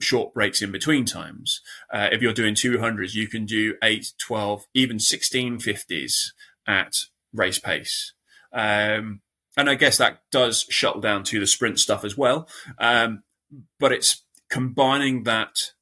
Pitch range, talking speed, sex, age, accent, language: 100-120 Hz, 150 wpm, male, 20-39, British, English